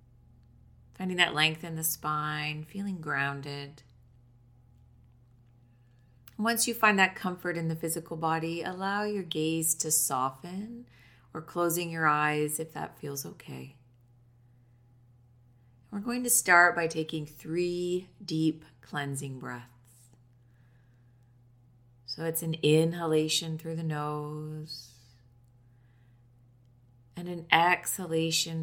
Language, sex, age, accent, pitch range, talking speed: English, female, 30-49, American, 120-160 Hz, 105 wpm